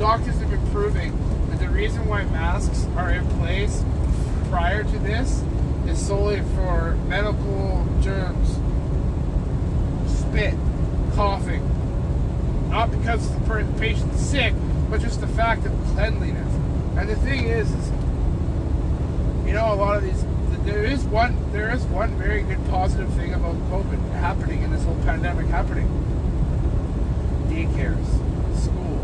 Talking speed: 130 wpm